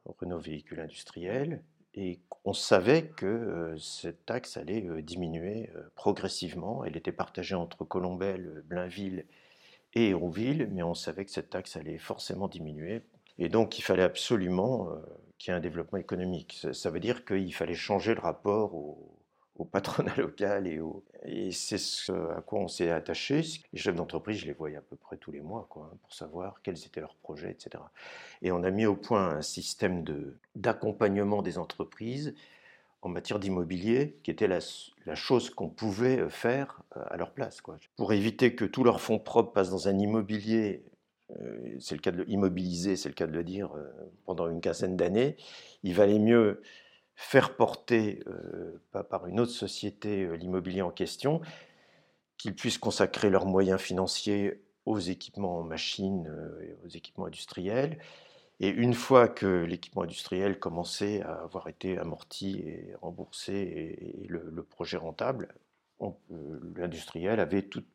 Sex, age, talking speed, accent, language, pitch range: male, 50-69, 165 wpm, French, French, 90-105 Hz